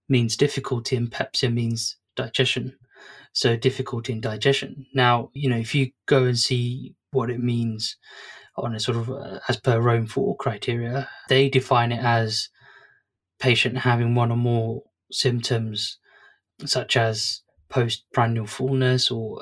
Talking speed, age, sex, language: 140 wpm, 20-39, male, English